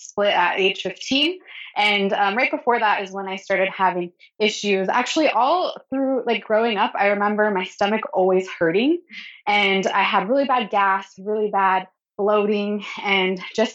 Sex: female